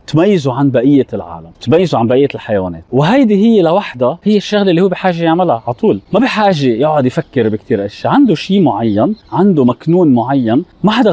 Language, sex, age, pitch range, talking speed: Arabic, male, 30-49, 120-185 Hz, 180 wpm